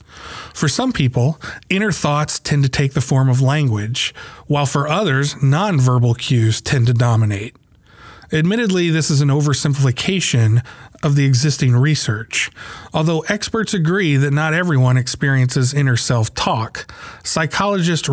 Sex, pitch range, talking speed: male, 130-165 Hz, 130 wpm